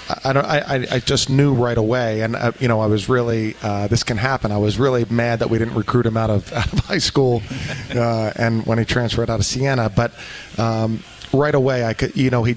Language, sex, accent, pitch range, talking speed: English, male, American, 110-125 Hz, 245 wpm